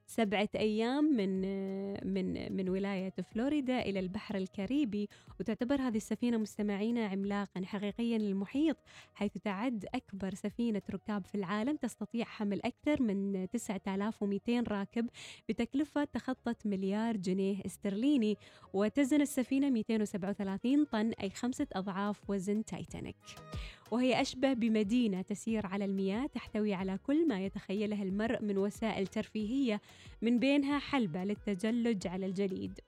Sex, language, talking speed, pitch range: female, Arabic, 120 wpm, 200-240 Hz